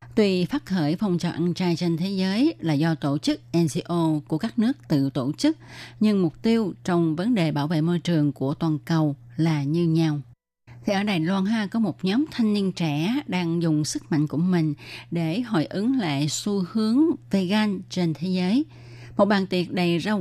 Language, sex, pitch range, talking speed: Vietnamese, female, 150-185 Hz, 205 wpm